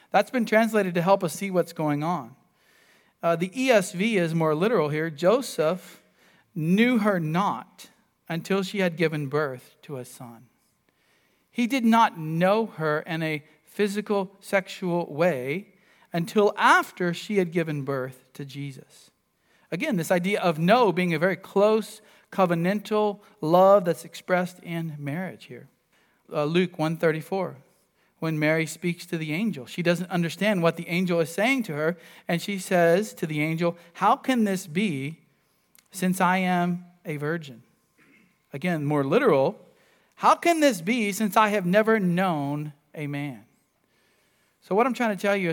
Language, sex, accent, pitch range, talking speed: English, male, American, 155-205 Hz, 155 wpm